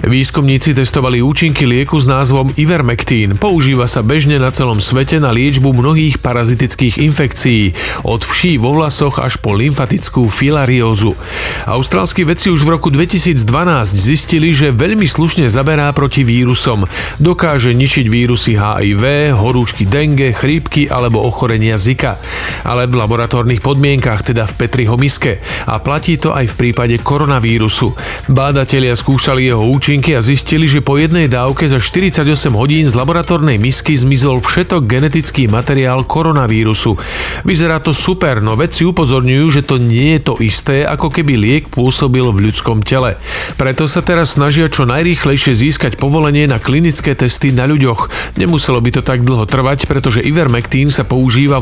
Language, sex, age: Slovak, male, 40-59